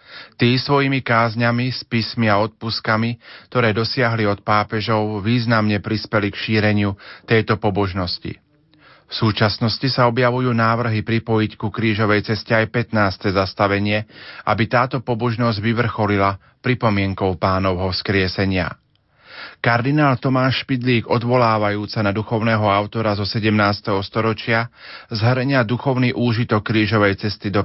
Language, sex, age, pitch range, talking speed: Slovak, male, 40-59, 105-120 Hz, 115 wpm